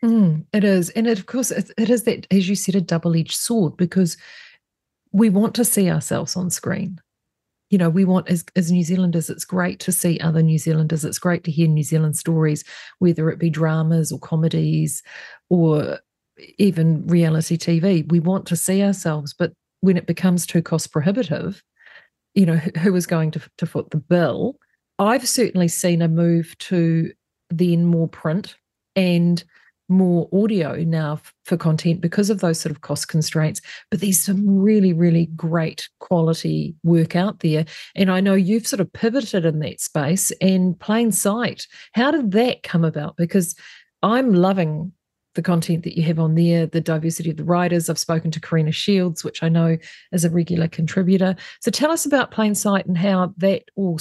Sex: female